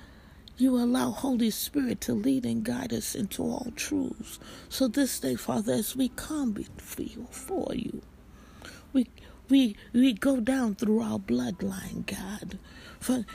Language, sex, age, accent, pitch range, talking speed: English, female, 60-79, American, 210-255 Hz, 140 wpm